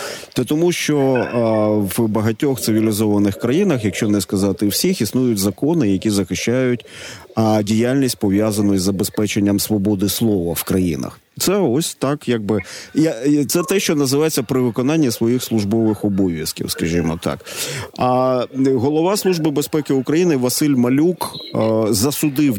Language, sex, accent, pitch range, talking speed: Ukrainian, male, native, 105-135 Hz, 130 wpm